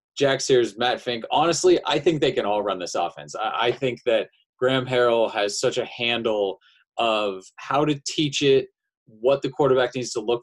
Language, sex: English, male